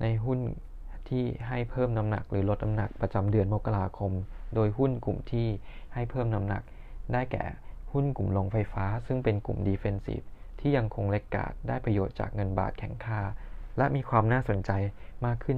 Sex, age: male, 20-39